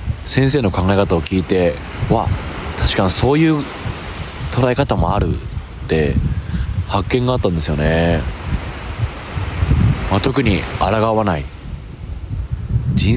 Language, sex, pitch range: Japanese, male, 85-110 Hz